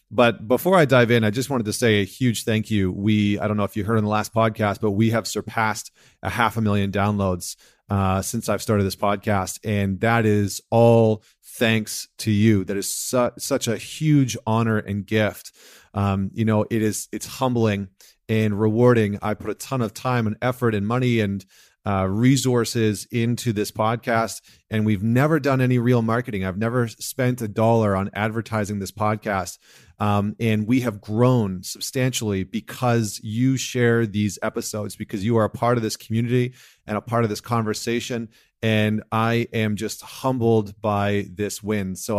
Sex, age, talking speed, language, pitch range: male, 30-49, 185 wpm, English, 100-120 Hz